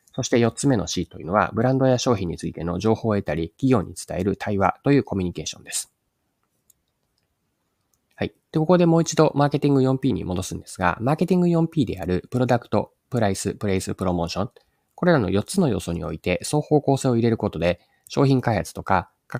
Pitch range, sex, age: 90-130 Hz, male, 20-39